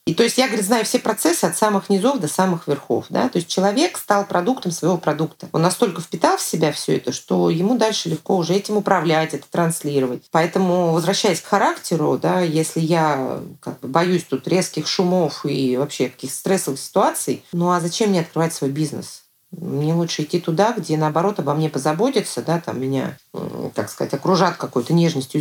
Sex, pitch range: female, 155-200 Hz